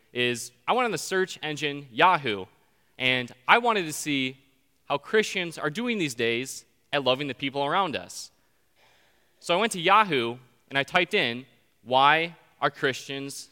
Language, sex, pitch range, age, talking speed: English, male, 130-170 Hz, 20-39, 165 wpm